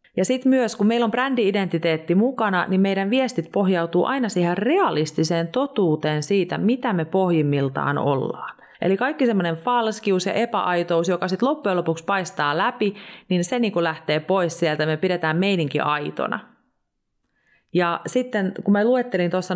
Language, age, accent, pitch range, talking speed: Finnish, 30-49, native, 160-215 Hz, 155 wpm